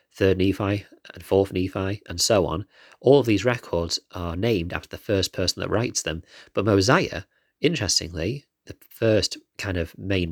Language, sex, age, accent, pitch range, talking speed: English, male, 30-49, British, 90-105 Hz, 170 wpm